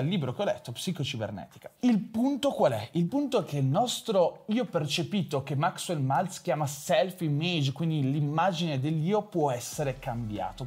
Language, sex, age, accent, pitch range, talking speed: Italian, male, 30-49, native, 140-205 Hz, 165 wpm